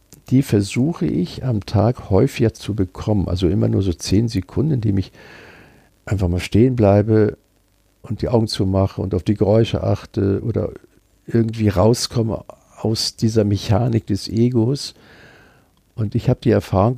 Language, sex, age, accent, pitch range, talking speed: German, male, 50-69, German, 100-120 Hz, 150 wpm